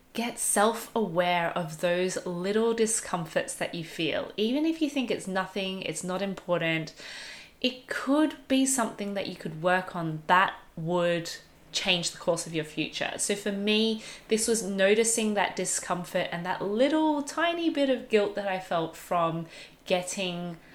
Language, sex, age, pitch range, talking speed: English, female, 20-39, 170-230 Hz, 160 wpm